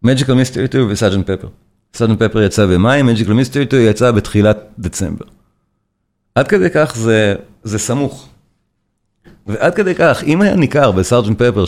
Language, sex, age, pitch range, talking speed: Hebrew, male, 40-59, 105-135 Hz, 150 wpm